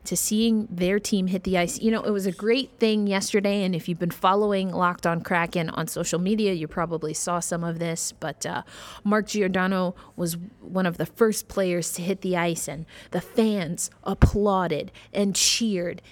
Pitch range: 175-210 Hz